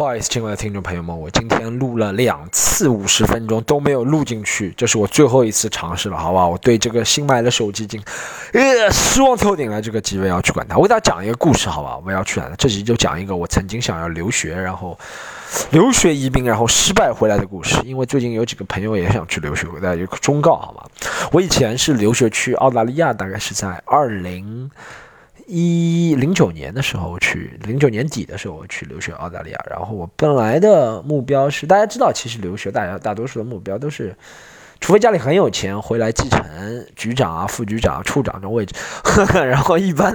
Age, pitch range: 20-39, 105-145 Hz